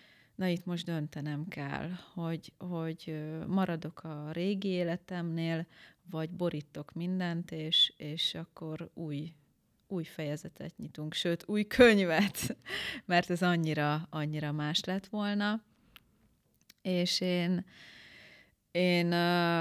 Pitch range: 155-180 Hz